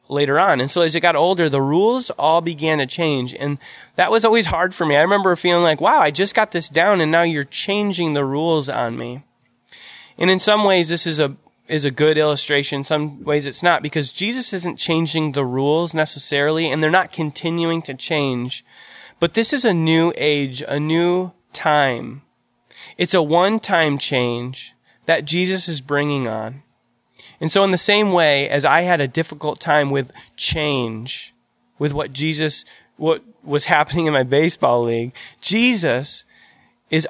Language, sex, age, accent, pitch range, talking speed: English, male, 20-39, American, 145-175 Hz, 180 wpm